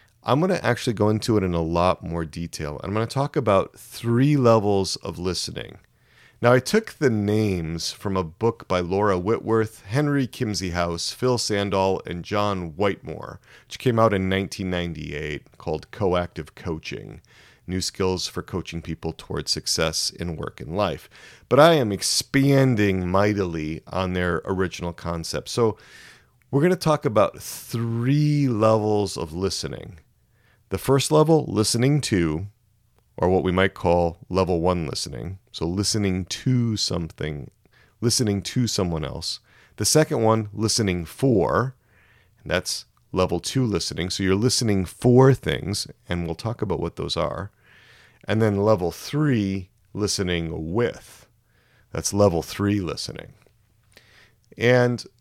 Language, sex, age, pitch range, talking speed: English, male, 40-59, 90-120 Hz, 140 wpm